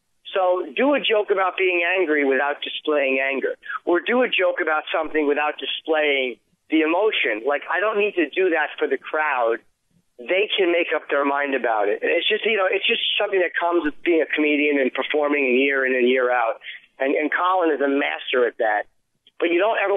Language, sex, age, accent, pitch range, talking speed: English, male, 40-59, American, 145-240 Hz, 210 wpm